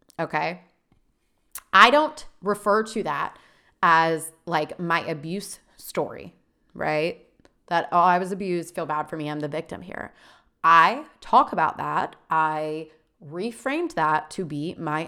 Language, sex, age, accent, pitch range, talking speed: English, female, 30-49, American, 165-220 Hz, 140 wpm